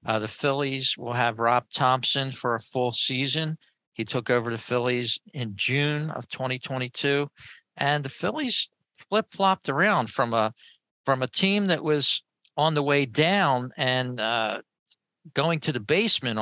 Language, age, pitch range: English, 50-69, 115-155 Hz